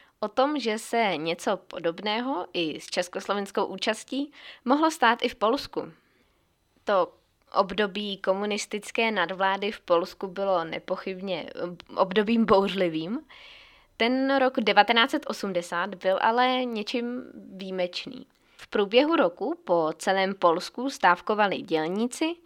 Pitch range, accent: 180-220 Hz, native